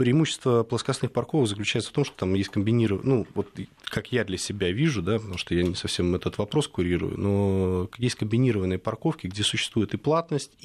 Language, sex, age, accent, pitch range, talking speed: Russian, male, 20-39, native, 90-110 Hz, 190 wpm